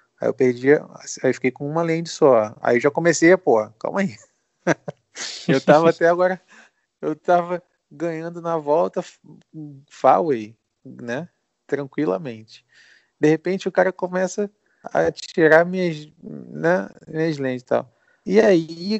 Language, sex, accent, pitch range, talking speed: Portuguese, male, Brazilian, 125-170 Hz, 135 wpm